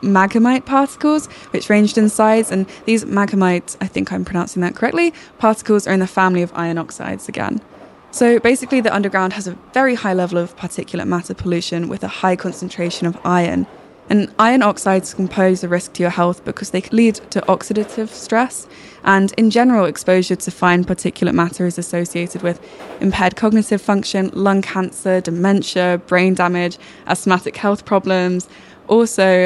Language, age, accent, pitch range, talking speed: English, 10-29, British, 180-210 Hz, 165 wpm